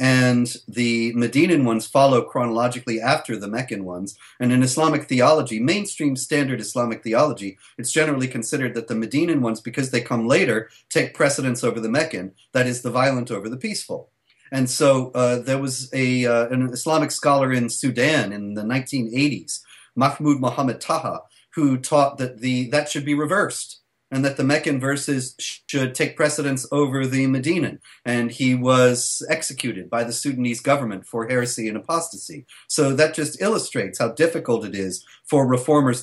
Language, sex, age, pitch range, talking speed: English, male, 40-59, 120-145 Hz, 165 wpm